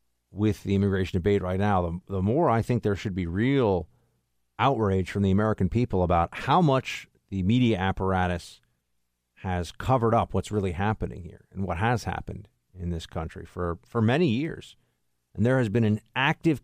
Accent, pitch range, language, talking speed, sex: American, 90-125 Hz, English, 180 wpm, male